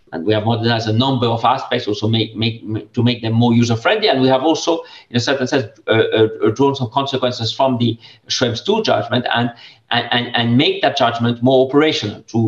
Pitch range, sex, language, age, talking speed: 110-135 Hz, male, Slovak, 50-69, 200 wpm